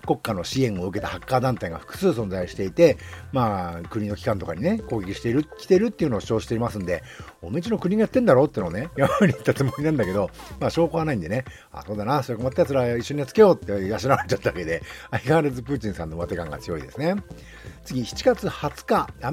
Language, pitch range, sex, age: Japanese, 105-170 Hz, male, 50-69